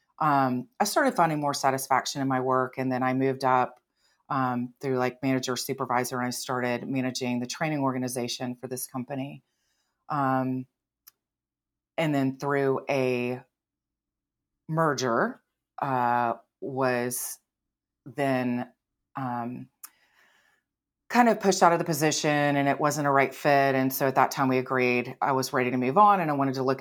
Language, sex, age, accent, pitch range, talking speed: English, female, 30-49, American, 130-145 Hz, 155 wpm